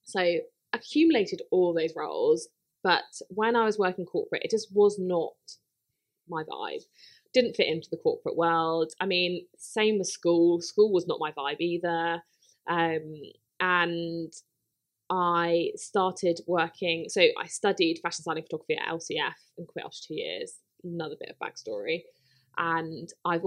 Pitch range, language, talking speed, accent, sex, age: 165-210 Hz, English, 150 wpm, British, female, 20-39